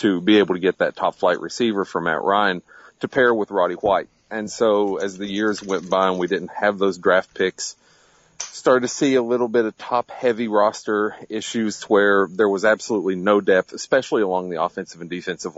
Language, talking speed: English, 210 wpm